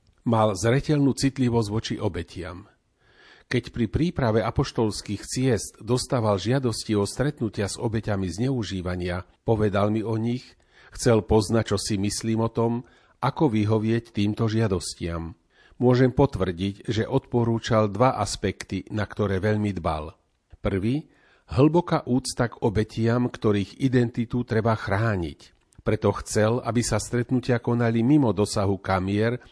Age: 40-59